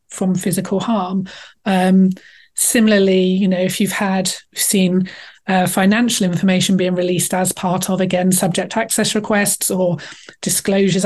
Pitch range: 185-210 Hz